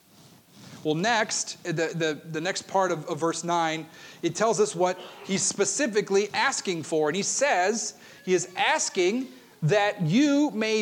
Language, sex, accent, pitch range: English, male, American, 170-225 Hz